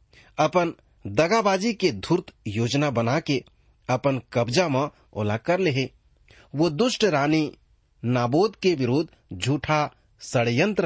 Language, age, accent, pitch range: English, 40-59, Indian, 120-170 Hz